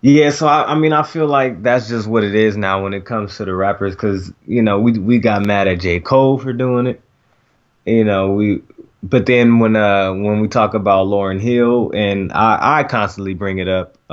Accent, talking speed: American, 225 wpm